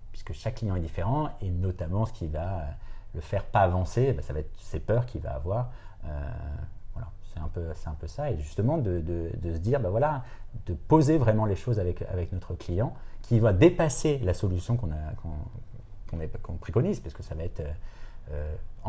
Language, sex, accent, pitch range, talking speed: French, male, French, 90-115 Hz, 215 wpm